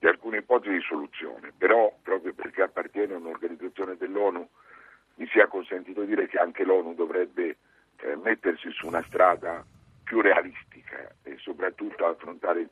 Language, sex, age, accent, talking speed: Italian, male, 60-79, native, 150 wpm